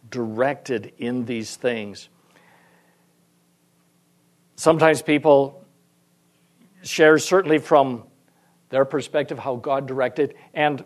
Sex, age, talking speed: male, 60-79, 85 wpm